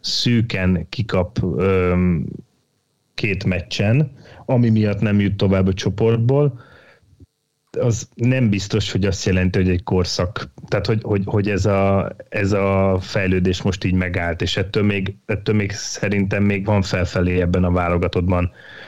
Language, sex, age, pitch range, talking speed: Hungarian, male, 30-49, 95-110 Hz, 135 wpm